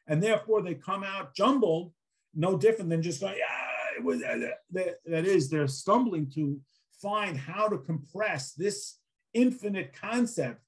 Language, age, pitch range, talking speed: English, 50-69, 150-210 Hz, 145 wpm